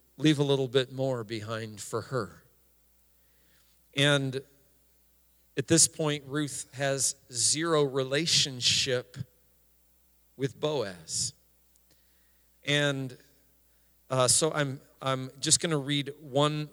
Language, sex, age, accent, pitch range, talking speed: English, male, 40-59, American, 105-140 Hz, 100 wpm